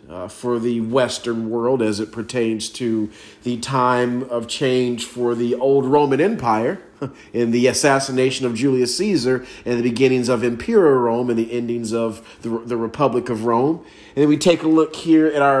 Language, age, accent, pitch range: English, 40-59, American, 115-135 Hz